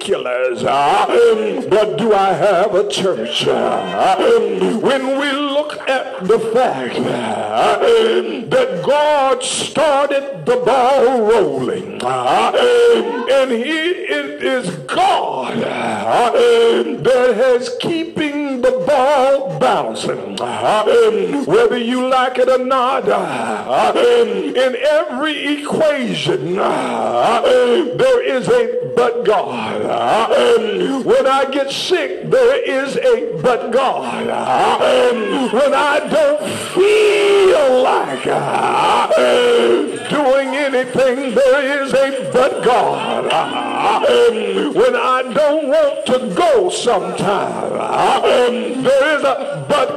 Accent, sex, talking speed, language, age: American, male, 110 wpm, English, 60-79